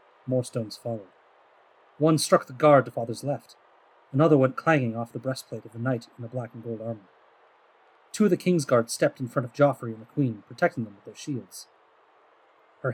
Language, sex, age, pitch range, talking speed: English, male, 30-49, 115-175 Hz, 205 wpm